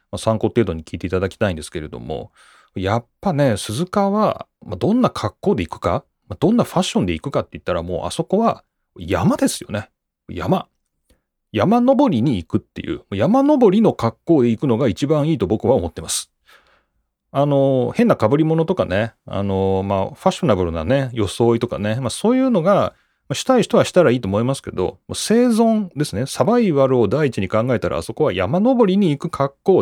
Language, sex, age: Japanese, male, 30-49